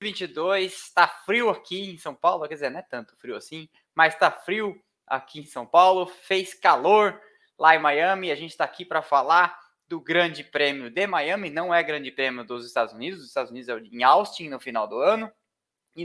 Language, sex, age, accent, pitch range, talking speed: Portuguese, male, 20-39, Brazilian, 145-195 Hz, 205 wpm